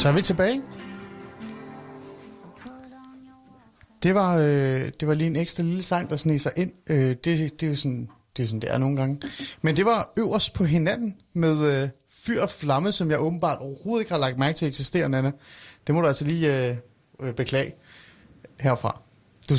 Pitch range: 130-160 Hz